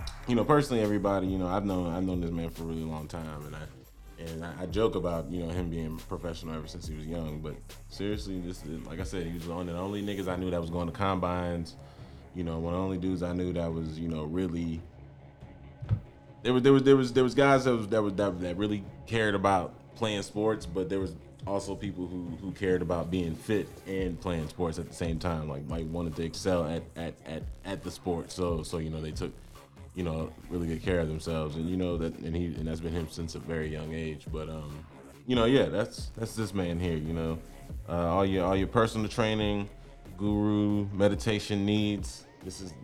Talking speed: 240 wpm